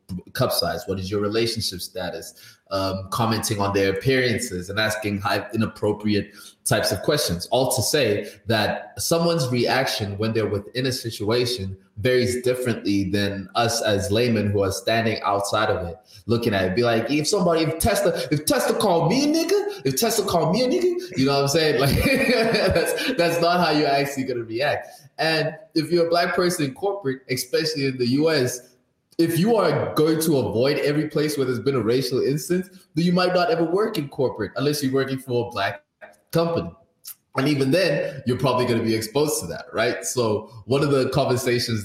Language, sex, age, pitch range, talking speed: English, male, 20-39, 110-155 Hz, 195 wpm